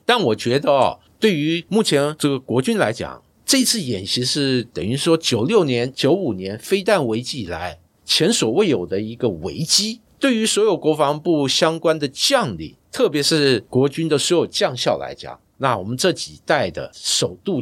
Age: 60-79